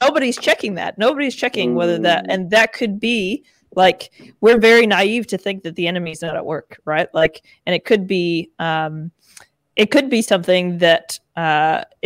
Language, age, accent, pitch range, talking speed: English, 20-39, American, 160-205 Hz, 180 wpm